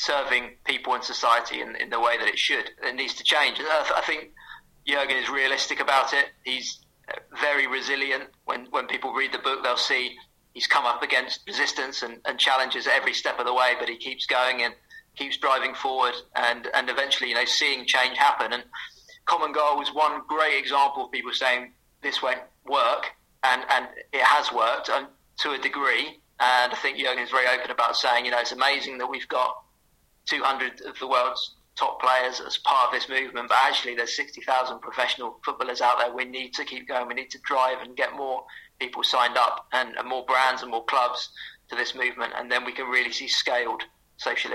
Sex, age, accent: male, 30-49, British